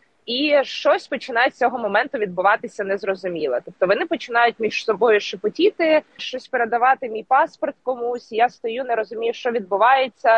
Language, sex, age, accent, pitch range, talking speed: Ukrainian, female, 20-39, native, 210-275 Hz, 145 wpm